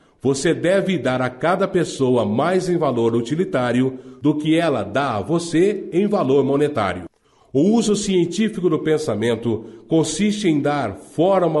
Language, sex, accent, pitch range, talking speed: Portuguese, male, Brazilian, 130-175 Hz, 145 wpm